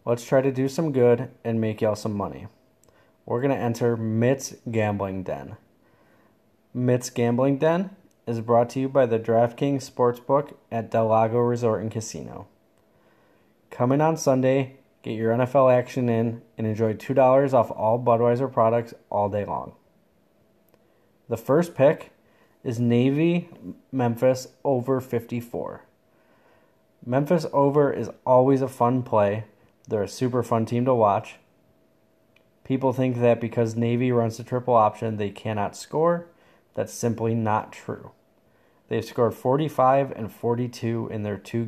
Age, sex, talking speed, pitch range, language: 20-39, male, 145 wpm, 110-130 Hz, English